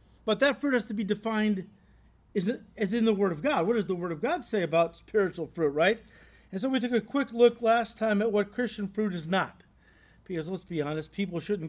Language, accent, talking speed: English, American, 230 wpm